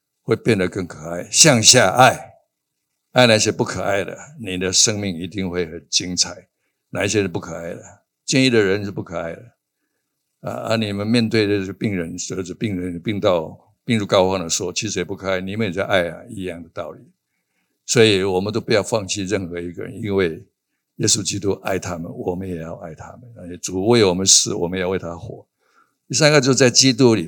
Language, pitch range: Chinese, 90-115 Hz